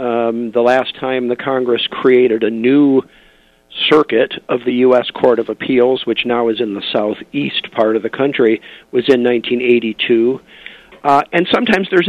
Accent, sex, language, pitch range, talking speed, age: American, male, English, 120-145 Hz, 165 wpm, 50-69